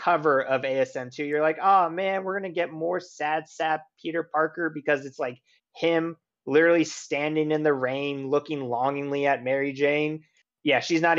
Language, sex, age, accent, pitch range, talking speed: English, male, 30-49, American, 125-150 Hz, 165 wpm